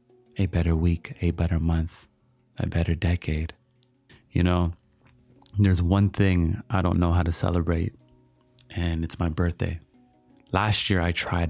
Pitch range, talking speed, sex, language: 85-100 Hz, 145 wpm, male, English